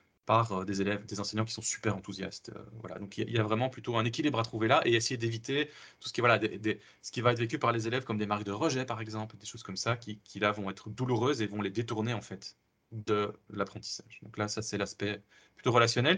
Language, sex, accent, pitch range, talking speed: French, male, French, 105-120 Hz, 270 wpm